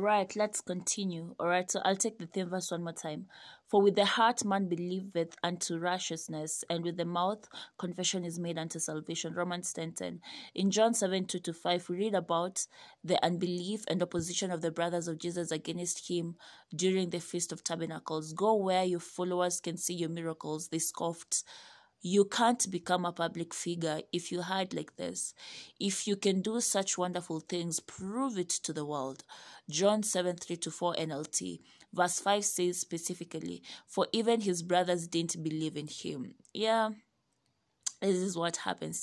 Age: 20-39